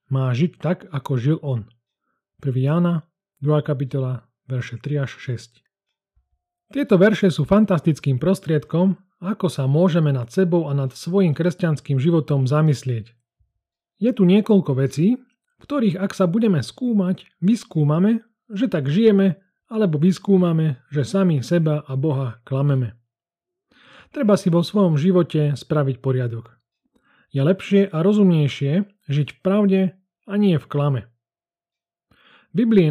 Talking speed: 130 wpm